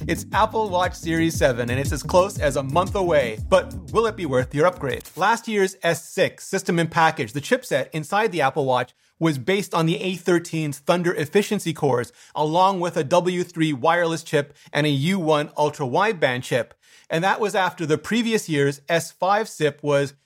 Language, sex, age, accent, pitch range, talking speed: English, male, 30-49, American, 145-190 Hz, 185 wpm